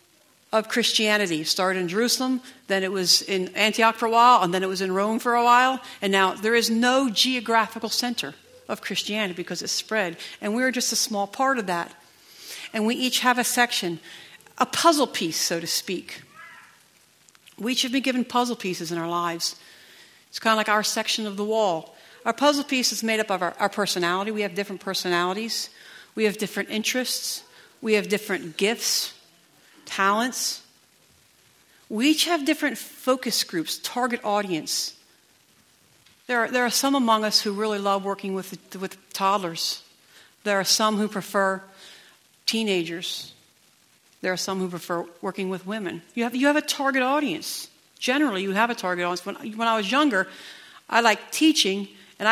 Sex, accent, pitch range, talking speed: female, American, 190-240 Hz, 180 wpm